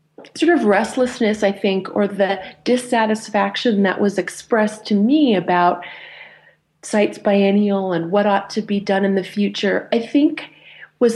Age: 30-49